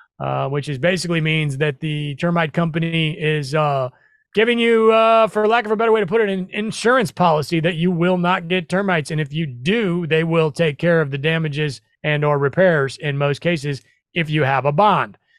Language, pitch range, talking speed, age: English, 150-180 Hz, 210 wpm, 30-49